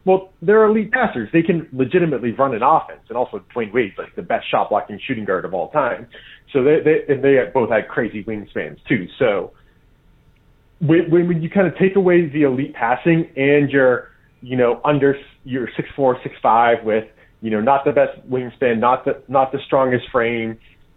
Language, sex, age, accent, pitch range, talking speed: English, male, 30-49, American, 115-160 Hz, 185 wpm